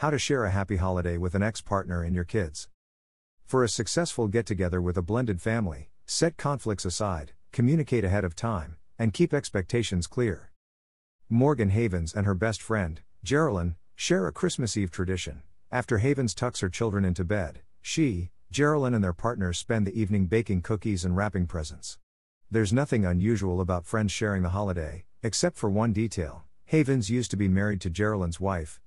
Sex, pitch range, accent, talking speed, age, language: male, 90-115 Hz, American, 175 wpm, 50-69, English